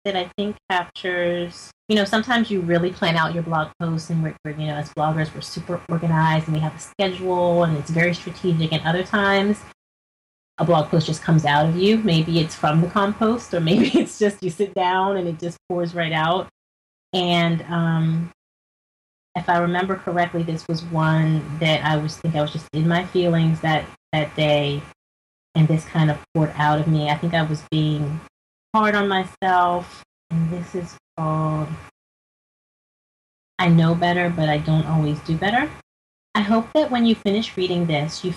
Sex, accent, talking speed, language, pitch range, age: female, American, 190 wpm, English, 160-185 Hz, 30-49